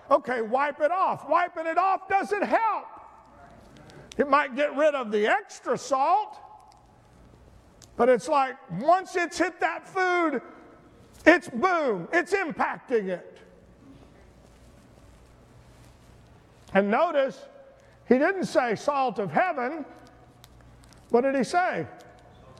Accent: American